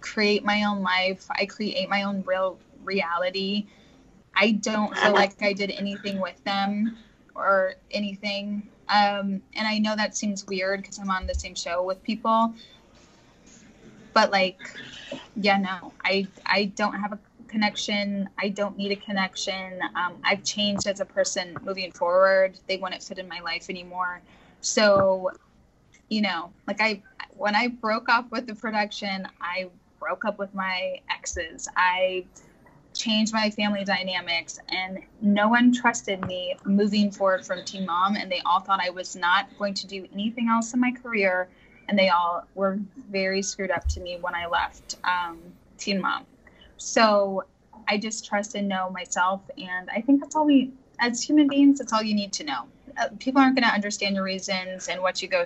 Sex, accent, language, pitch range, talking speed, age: female, American, English, 190-215 Hz, 175 wpm, 10-29